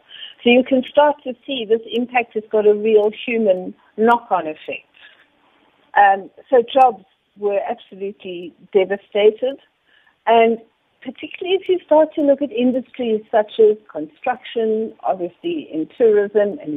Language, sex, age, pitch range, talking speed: English, female, 60-79, 205-275 Hz, 130 wpm